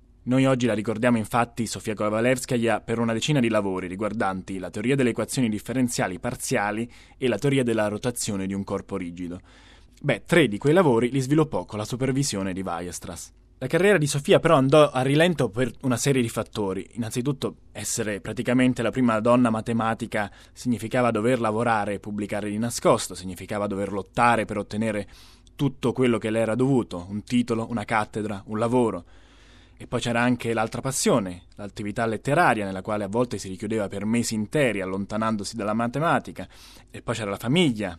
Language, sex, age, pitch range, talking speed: Italian, male, 20-39, 100-130 Hz, 170 wpm